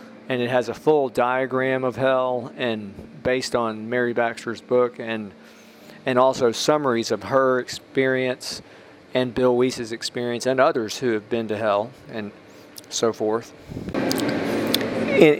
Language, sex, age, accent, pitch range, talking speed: English, male, 40-59, American, 115-140 Hz, 140 wpm